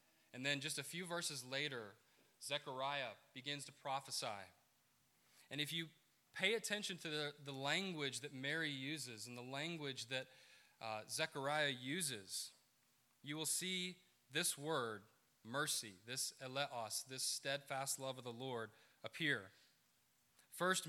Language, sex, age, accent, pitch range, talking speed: English, male, 20-39, American, 125-155 Hz, 130 wpm